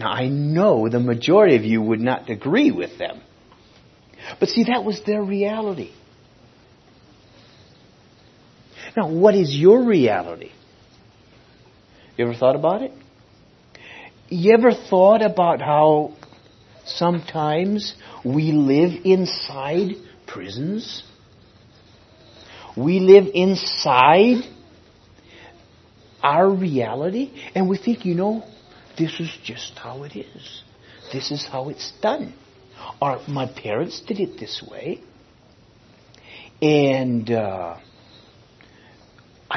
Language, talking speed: English, 100 wpm